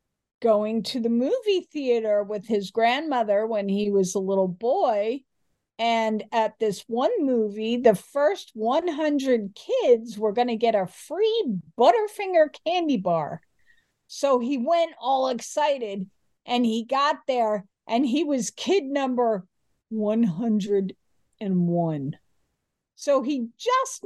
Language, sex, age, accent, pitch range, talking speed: English, female, 50-69, American, 215-300 Hz, 125 wpm